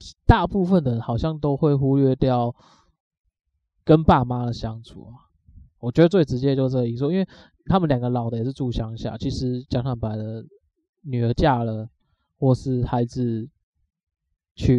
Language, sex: Chinese, male